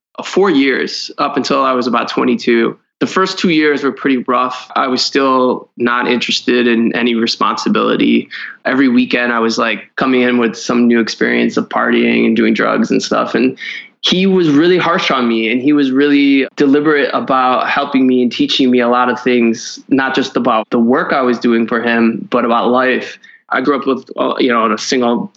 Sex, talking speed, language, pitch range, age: male, 200 wpm, English, 120-140 Hz, 20-39